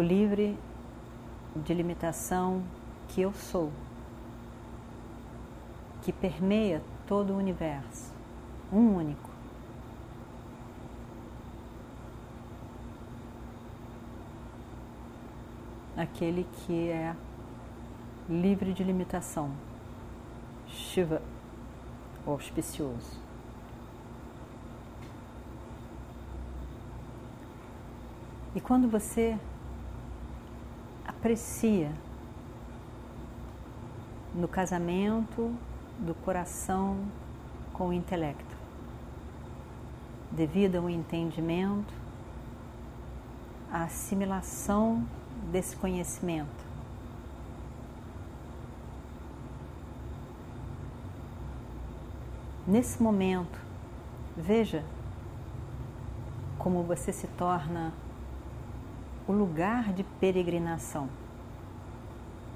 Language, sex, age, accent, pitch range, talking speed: Portuguese, female, 40-59, Brazilian, 115-185 Hz, 50 wpm